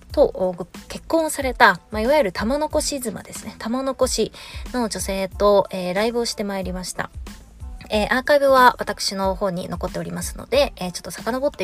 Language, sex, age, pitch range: Japanese, female, 20-39, 190-280 Hz